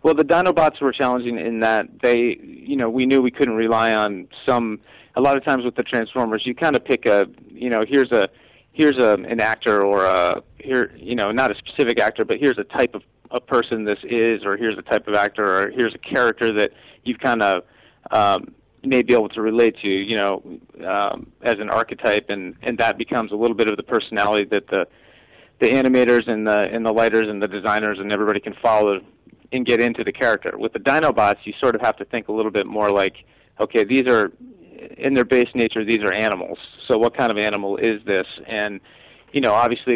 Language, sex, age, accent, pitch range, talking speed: English, male, 30-49, American, 105-125 Hz, 220 wpm